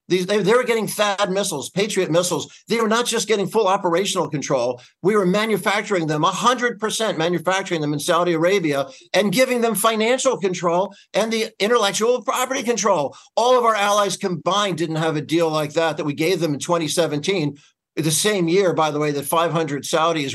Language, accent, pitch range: English, American, 145-185 Hz